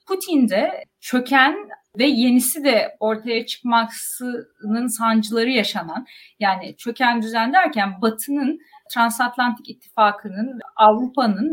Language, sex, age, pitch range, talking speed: Turkish, female, 30-49, 210-275 Hz, 90 wpm